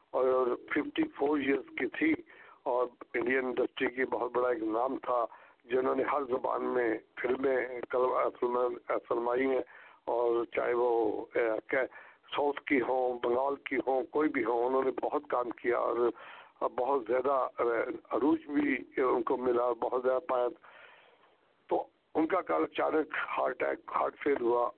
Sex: male